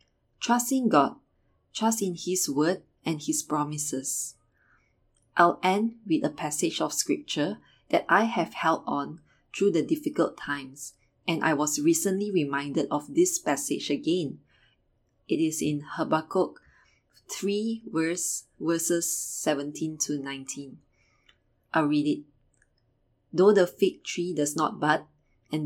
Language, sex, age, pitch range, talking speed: English, female, 20-39, 145-180 Hz, 125 wpm